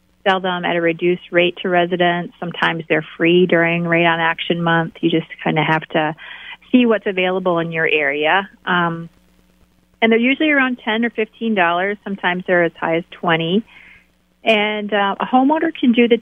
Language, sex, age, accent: English, female, 40-59, American